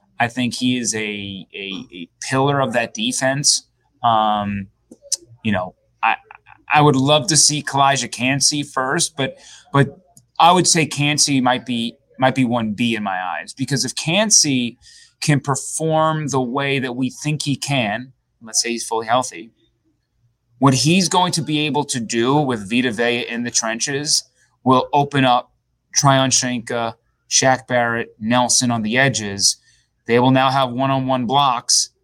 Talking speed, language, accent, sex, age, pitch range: 160 wpm, English, American, male, 30-49, 120-145 Hz